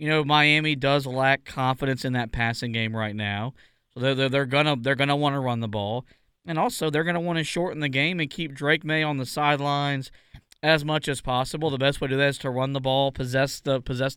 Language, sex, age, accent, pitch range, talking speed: English, male, 20-39, American, 135-155 Hz, 245 wpm